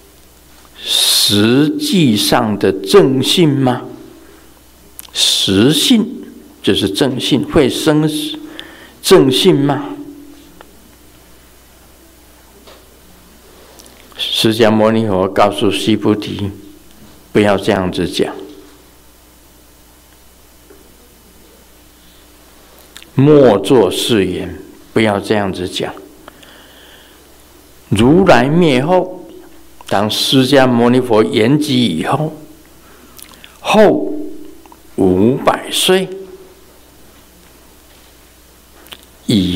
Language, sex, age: Chinese, male, 60-79